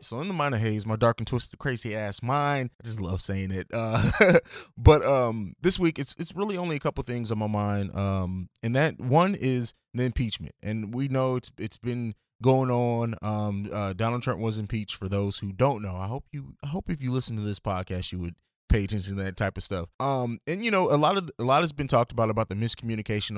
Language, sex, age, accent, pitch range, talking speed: English, male, 20-39, American, 105-135 Hz, 240 wpm